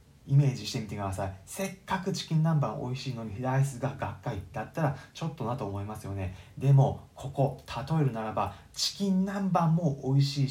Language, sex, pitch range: Japanese, male, 130-165 Hz